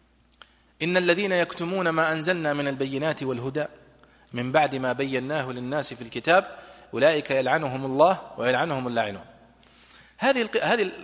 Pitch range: 135-195 Hz